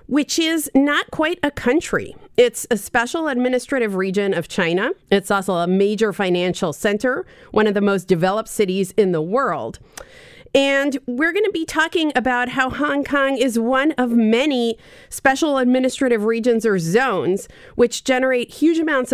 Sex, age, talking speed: female, 40-59, 155 wpm